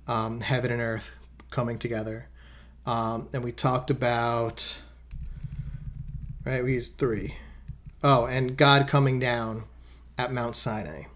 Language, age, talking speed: English, 30-49, 125 wpm